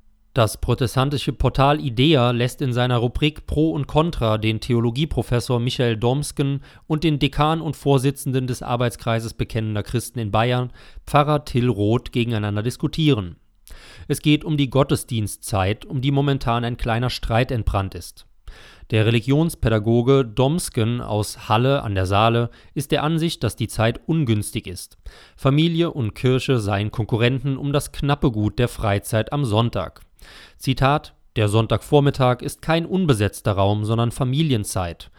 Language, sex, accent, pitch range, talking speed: German, male, German, 110-140 Hz, 140 wpm